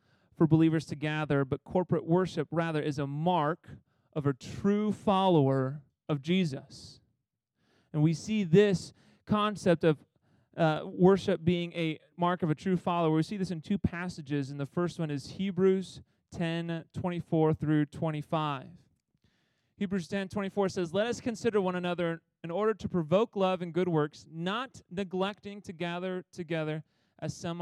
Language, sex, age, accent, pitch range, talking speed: English, male, 30-49, American, 150-185 Hz, 155 wpm